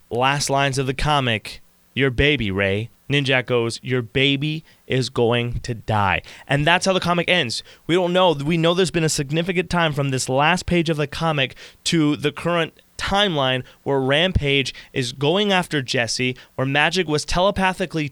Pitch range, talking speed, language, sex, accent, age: 130-175 Hz, 175 wpm, English, male, American, 20-39